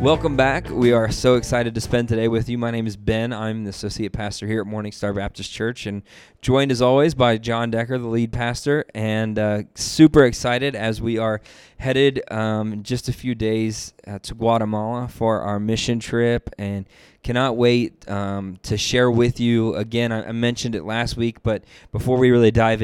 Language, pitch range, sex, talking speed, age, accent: English, 105-120 Hz, male, 195 wpm, 20-39, American